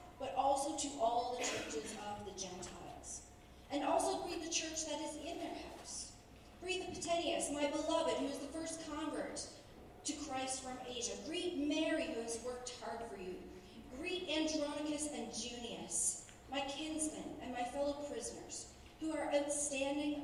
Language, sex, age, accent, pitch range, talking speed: English, female, 40-59, American, 230-300 Hz, 160 wpm